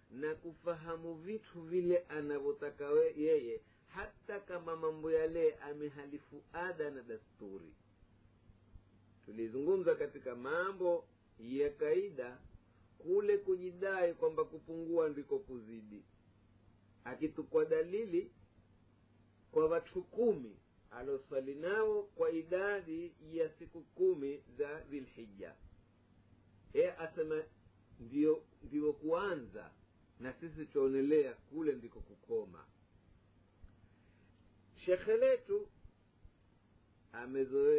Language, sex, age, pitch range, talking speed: Swahili, male, 50-69, 115-180 Hz, 85 wpm